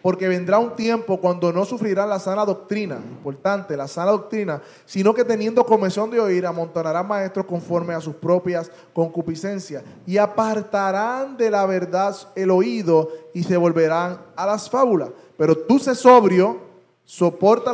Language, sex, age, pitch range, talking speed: Spanish, male, 20-39, 165-215 Hz, 150 wpm